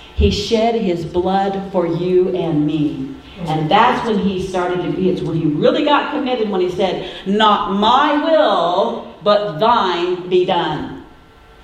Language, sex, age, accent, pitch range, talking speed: English, female, 50-69, American, 190-265 Hz, 160 wpm